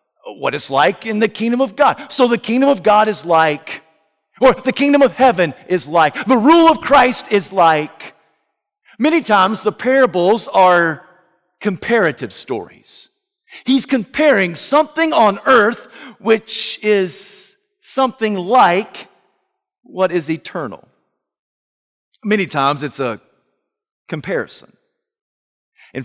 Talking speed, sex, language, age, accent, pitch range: 120 wpm, male, English, 50-69, American, 160-245 Hz